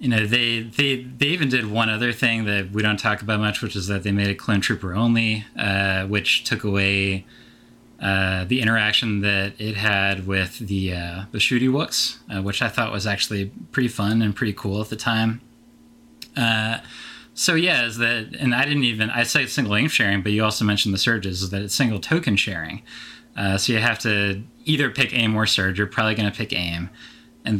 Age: 20-39